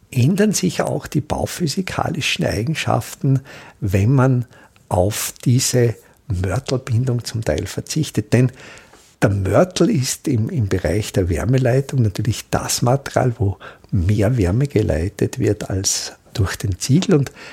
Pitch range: 105-145 Hz